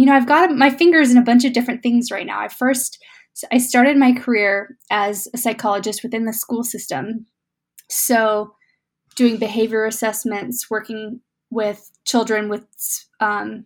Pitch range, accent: 210-245 Hz, American